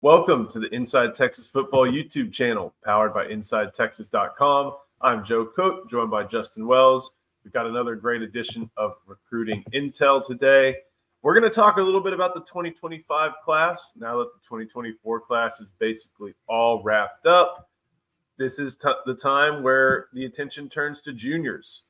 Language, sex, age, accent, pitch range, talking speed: English, male, 30-49, American, 115-150 Hz, 160 wpm